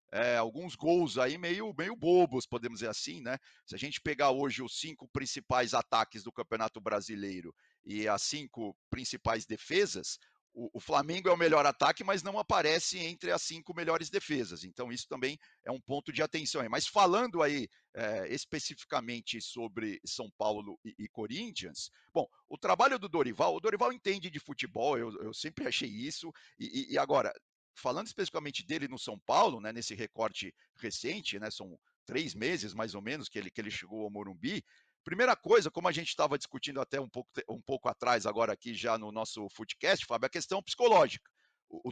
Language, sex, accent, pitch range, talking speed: Portuguese, male, Brazilian, 115-175 Hz, 185 wpm